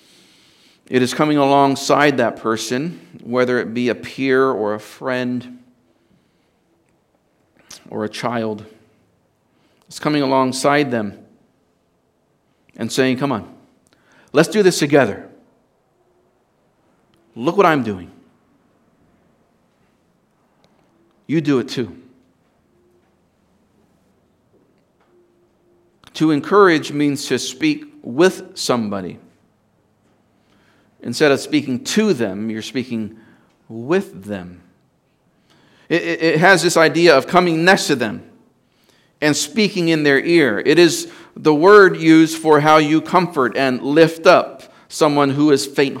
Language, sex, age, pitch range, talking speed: English, male, 50-69, 125-170 Hz, 110 wpm